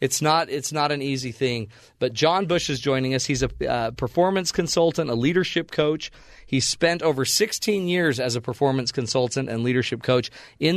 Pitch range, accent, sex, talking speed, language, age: 120-150 Hz, American, male, 190 wpm, English, 40-59